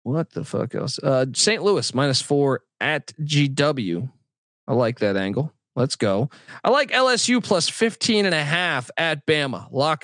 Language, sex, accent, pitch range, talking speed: English, male, American, 125-160 Hz, 165 wpm